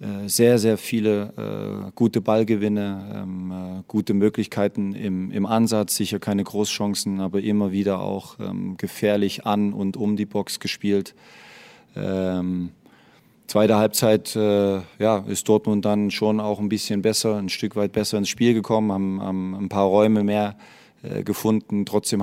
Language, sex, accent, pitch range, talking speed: German, male, German, 100-110 Hz, 130 wpm